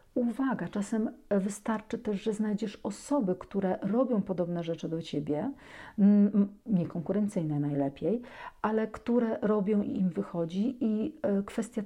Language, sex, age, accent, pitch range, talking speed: Polish, female, 50-69, native, 180-230 Hz, 115 wpm